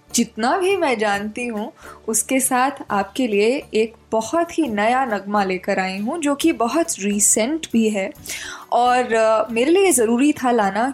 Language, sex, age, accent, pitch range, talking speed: Hindi, female, 10-29, native, 210-270 Hz, 160 wpm